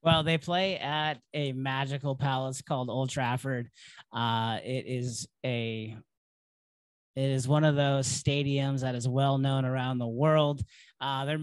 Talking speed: 145 wpm